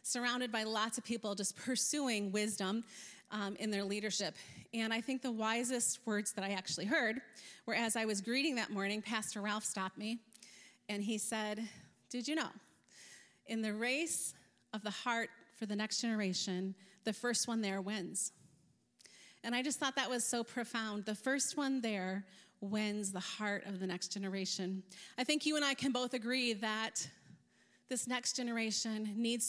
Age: 30-49